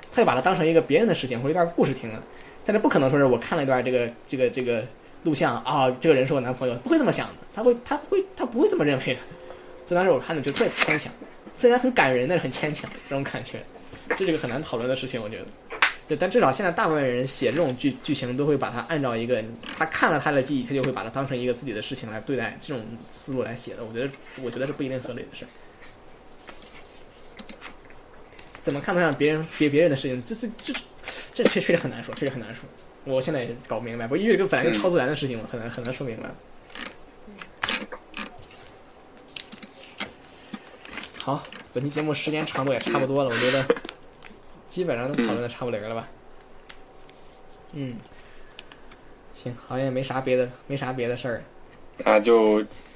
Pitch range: 125-155 Hz